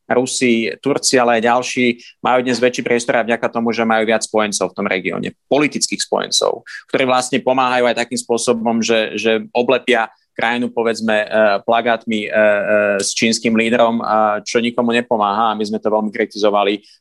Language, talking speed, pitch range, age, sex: Slovak, 160 wpm, 110-125 Hz, 30-49, male